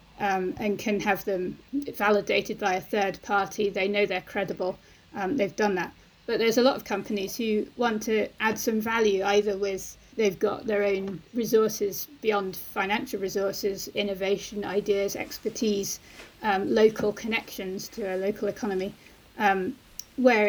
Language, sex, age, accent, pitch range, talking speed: English, female, 30-49, British, 195-220 Hz, 150 wpm